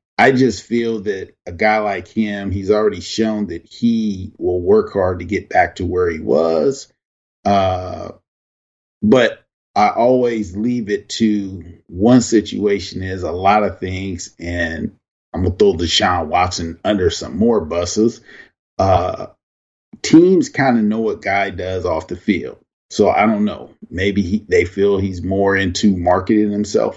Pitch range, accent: 90-110 Hz, American